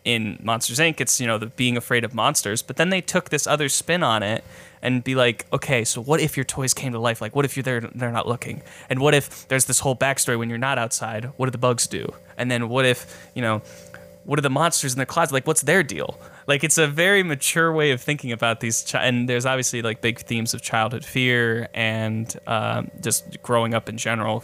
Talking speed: 245 wpm